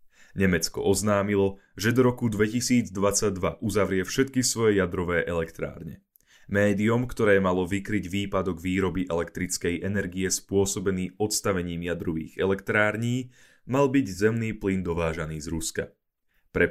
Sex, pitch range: male, 90-115 Hz